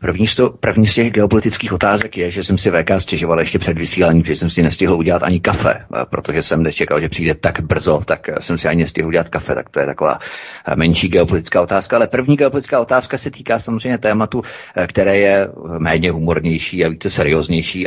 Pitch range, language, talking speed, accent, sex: 90-110 Hz, Czech, 200 wpm, native, male